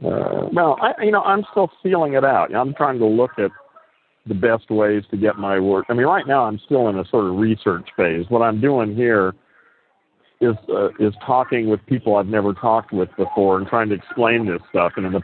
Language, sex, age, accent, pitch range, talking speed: English, male, 50-69, American, 100-125 Hz, 230 wpm